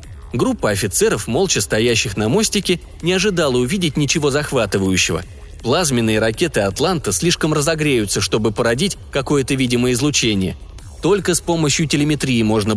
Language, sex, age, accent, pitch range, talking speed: Russian, male, 20-39, native, 110-155 Hz, 120 wpm